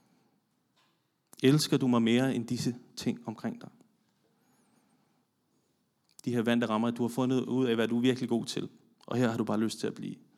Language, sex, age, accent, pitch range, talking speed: Danish, male, 30-49, native, 115-130 Hz, 195 wpm